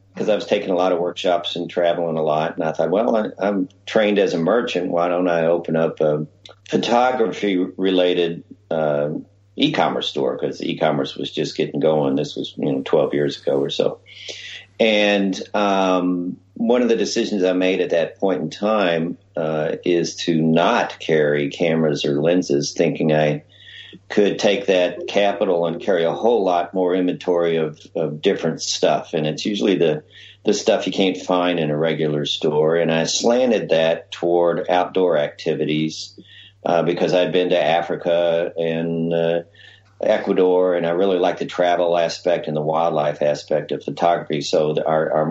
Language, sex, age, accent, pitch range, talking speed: English, male, 50-69, American, 80-95 Hz, 175 wpm